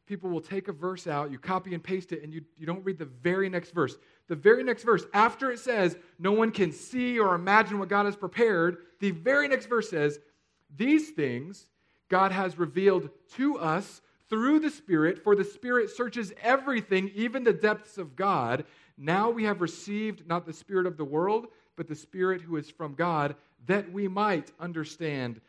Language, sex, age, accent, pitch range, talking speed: English, male, 40-59, American, 140-190 Hz, 195 wpm